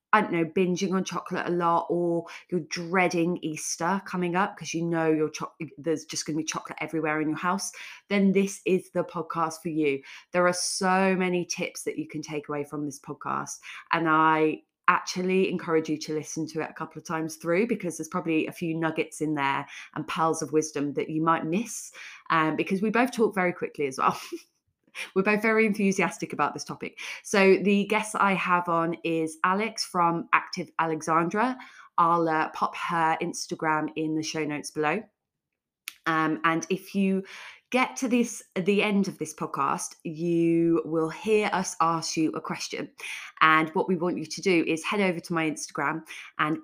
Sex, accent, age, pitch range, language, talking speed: female, British, 20-39, 155-185 Hz, English, 190 wpm